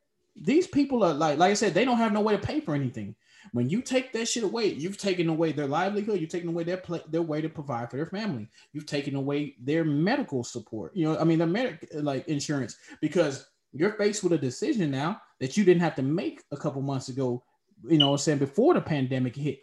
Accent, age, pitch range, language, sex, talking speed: American, 20-39, 140-175 Hz, English, male, 240 wpm